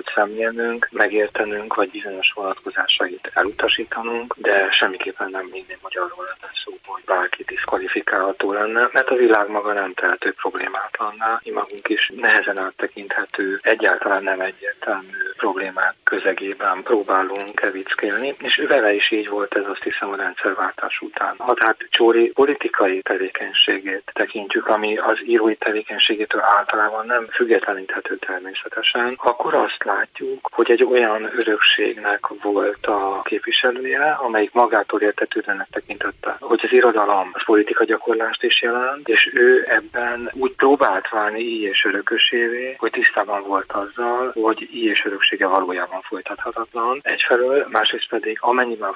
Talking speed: 130 wpm